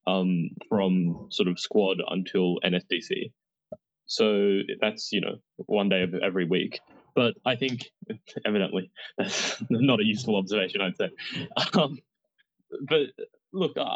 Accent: Australian